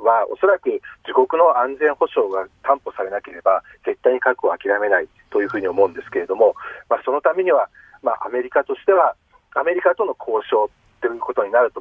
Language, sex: Japanese, male